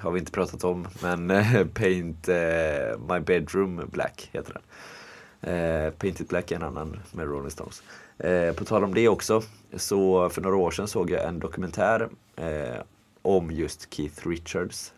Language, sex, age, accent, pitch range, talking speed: Swedish, male, 30-49, native, 80-95 Hz, 150 wpm